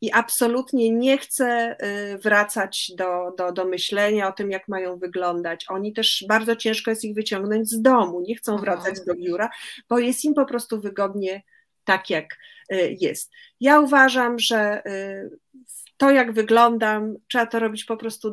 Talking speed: 155 wpm